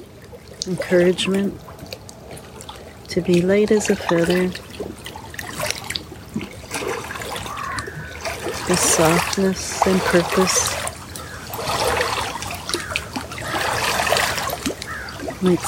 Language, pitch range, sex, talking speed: English, 160-180 Hz, female, 45 wpm